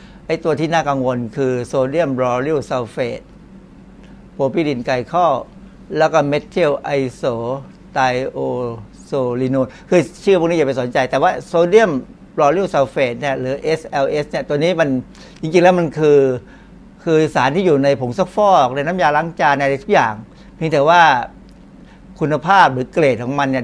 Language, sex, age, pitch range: Thai, male, 60-79, 130-165 Hz